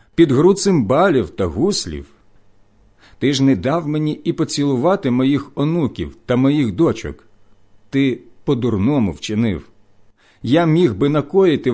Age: 50-69